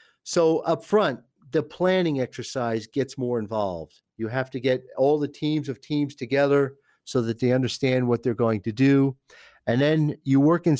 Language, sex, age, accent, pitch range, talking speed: English, male, 50-69, American, 115-150 Hz, 185 wpm